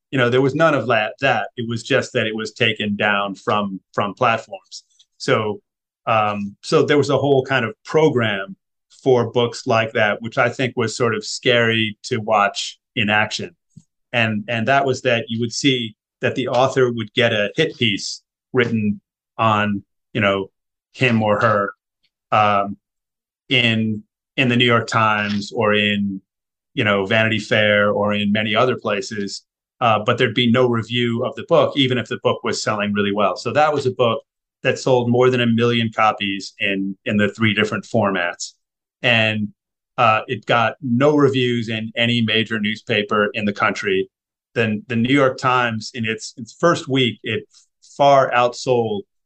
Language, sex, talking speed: English, male, 180 wpm